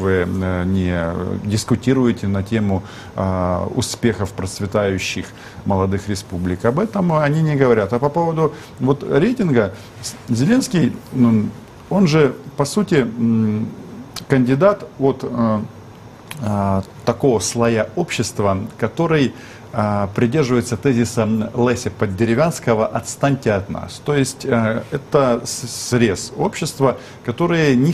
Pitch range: 100-135 Hz